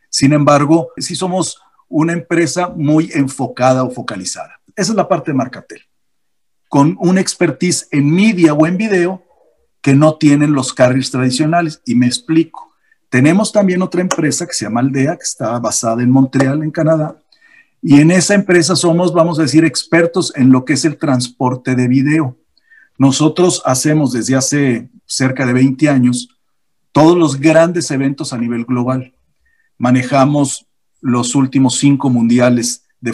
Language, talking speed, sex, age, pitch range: Spanish, 155 wpm, male, 50-69, 130-165 Hz